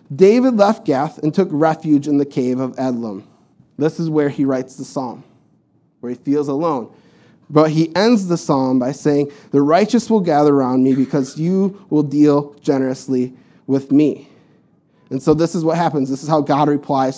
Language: English